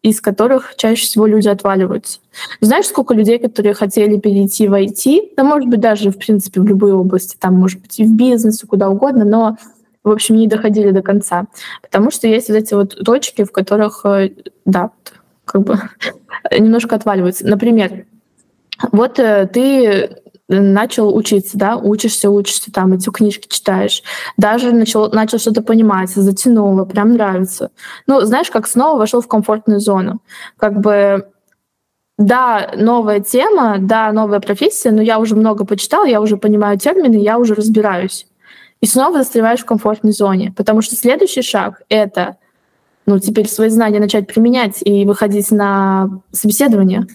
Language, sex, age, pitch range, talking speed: English, female, 20-39, 200-230 Hz, 155 wpm